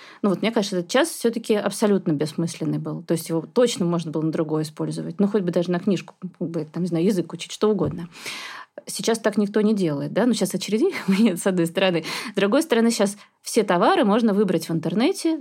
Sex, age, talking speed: female, 20-39, 220 wpm